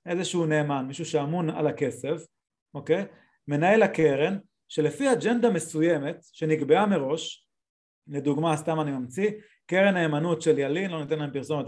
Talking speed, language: 135 wpm, Hebrew